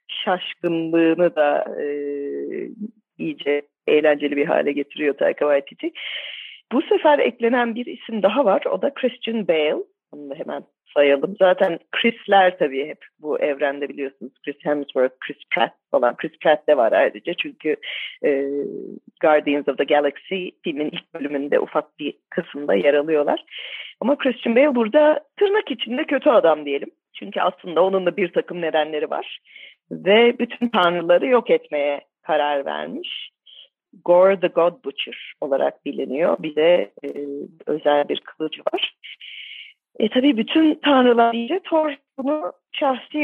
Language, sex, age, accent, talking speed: Turkish, female, 40-59, native, 140 wpm